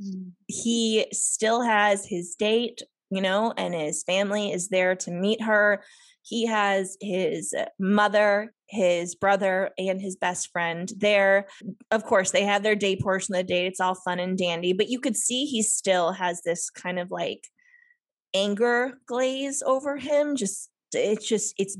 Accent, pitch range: American, 185-235 Hz